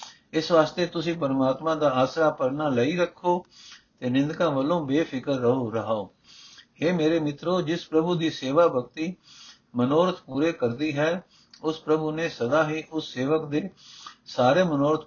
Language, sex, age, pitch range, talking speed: Punjabi, male, 60-79, 130-160 Hz, 145 wpm